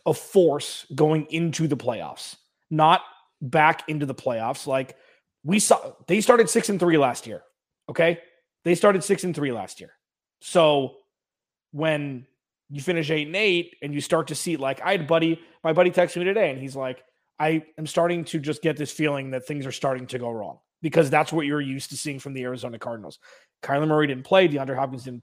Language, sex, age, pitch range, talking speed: English, male, 20-39, 145-175 Hz, 205 wpm